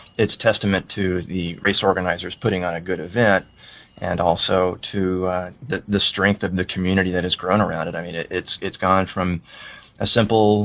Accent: American